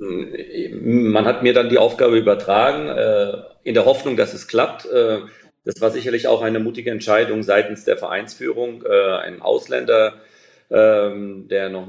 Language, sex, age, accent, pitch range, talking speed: German, male, 40-59, German, 100-120 Hz, 135 wpm